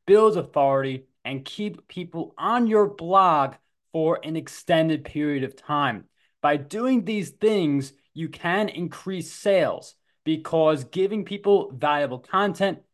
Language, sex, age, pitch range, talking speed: English, male, 20-39, 150-200 Hz, 125 wpm